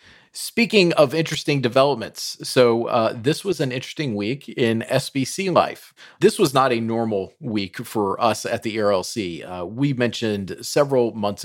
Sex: male